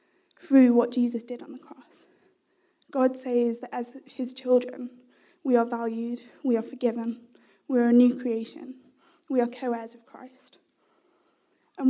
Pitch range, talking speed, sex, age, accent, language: 240-280 Hz, 150 wpm, female, 10-29, British, English